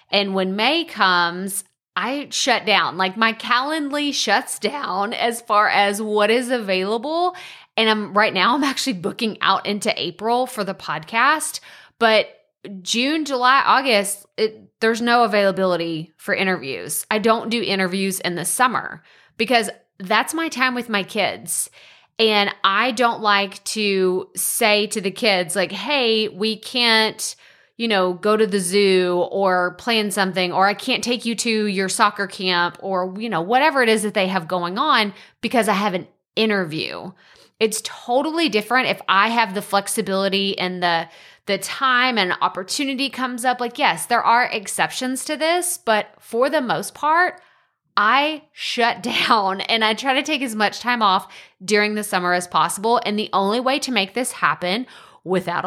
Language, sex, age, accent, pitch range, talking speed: English, female, 30-49, American, 195-245 Hz, 170 wpm